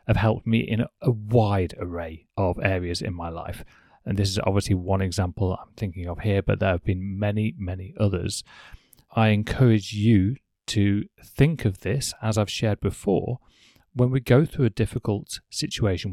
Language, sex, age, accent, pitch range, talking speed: English, male, 30-49, British, 95-120 Hz, 175 wpm